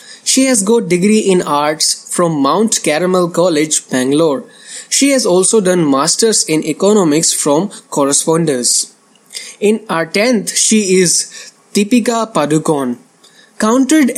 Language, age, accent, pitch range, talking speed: English, 20-39, Indian, 160-220 Hz, 120 wpm